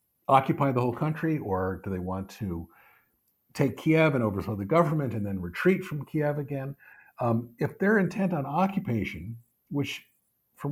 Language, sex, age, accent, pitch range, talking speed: English, male, 50-69, American, 95-140 Hz, 160 wpm